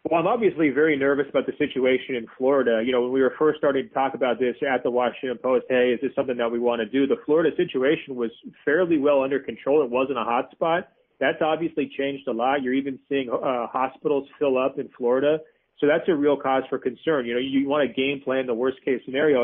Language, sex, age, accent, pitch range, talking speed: English, male, 40-59, American, 120-140 Hz, 240 wpm